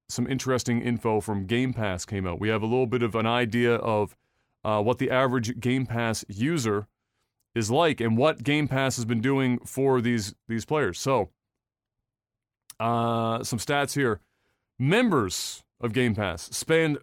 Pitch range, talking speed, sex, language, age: 110-130 Hz, 165 wpm, male, English, 30-49